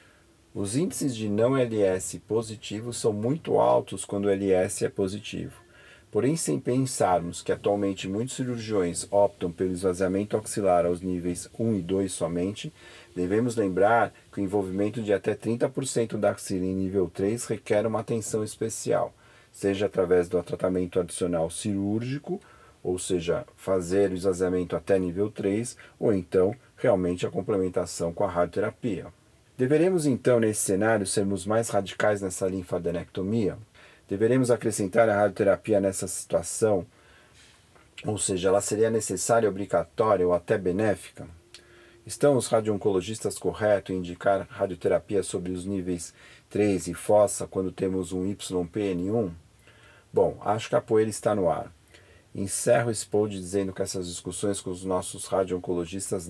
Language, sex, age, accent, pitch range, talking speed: Portuguese, male, 40-59, Brazilian, 95-115 Hz, 135 wpm